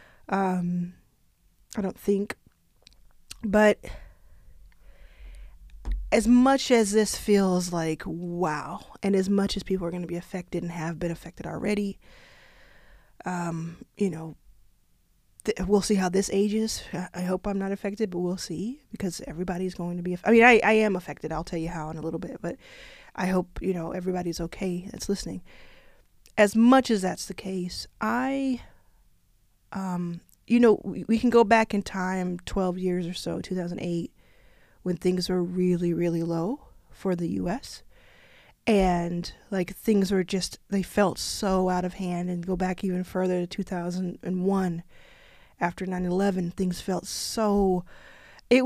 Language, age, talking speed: English, 20-39, 160 wpm